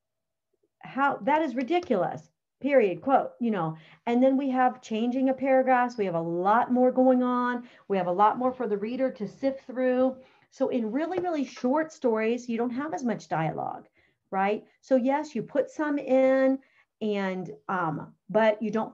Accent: American